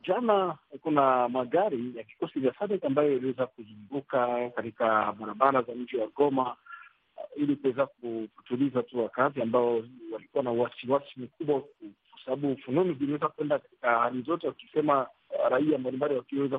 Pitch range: 130-190 Hz